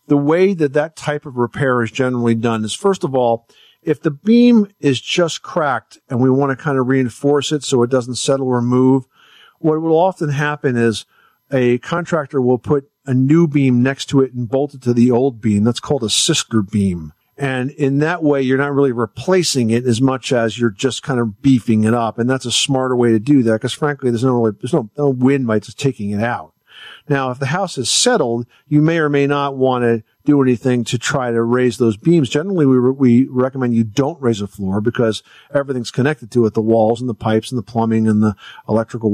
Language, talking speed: English, 230 wpm